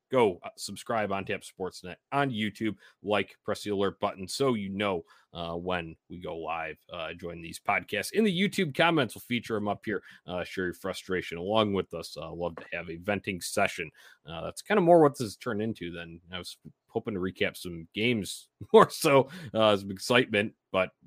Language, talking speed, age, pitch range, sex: English, 205 wpm, 30-49, 90-135 Hz, male